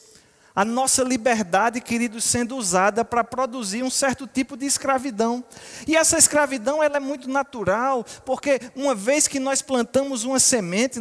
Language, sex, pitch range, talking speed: Portuguese, male, 205-270 Hz, 155 wpm